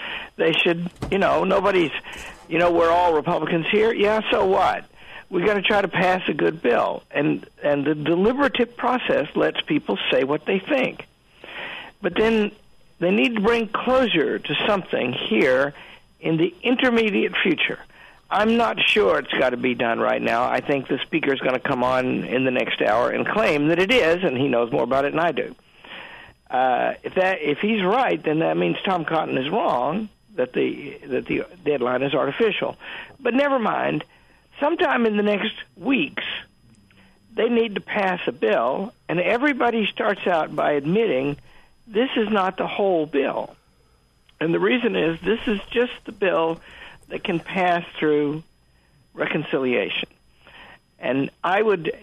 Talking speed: 170 wpm